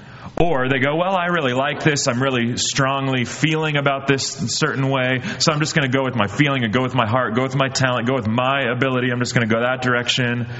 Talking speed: 265 wpm